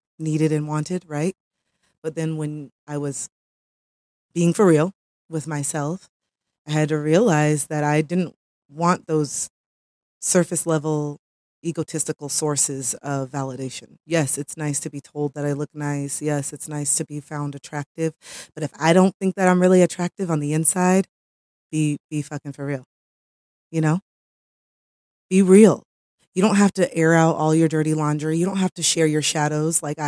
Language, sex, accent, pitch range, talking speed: English, female, American, 145-165 Hz, 170 wpm